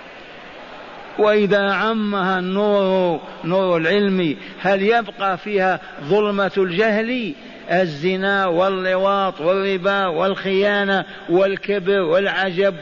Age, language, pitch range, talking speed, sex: 50-69, Arabic, 180-215 Hz, 75 wpm, male